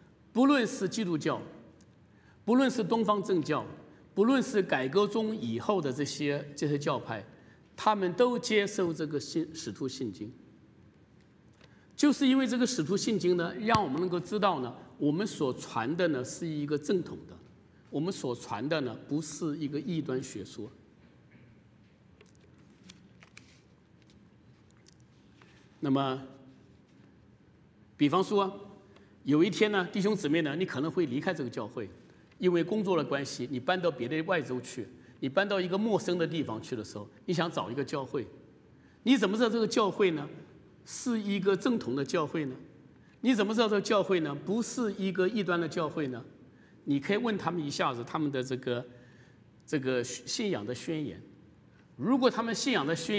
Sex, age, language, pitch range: male, 50-69, Chinese, 145-210 Hz